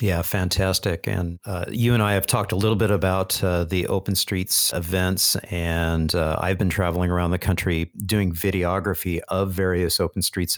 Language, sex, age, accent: English, male, 50-69, American